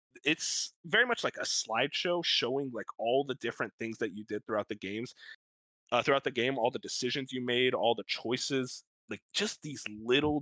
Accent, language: American, English